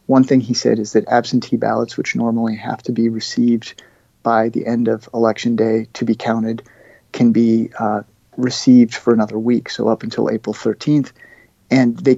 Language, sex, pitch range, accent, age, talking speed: English, male, 115-130 Hz, American, 40-59, 180 wpm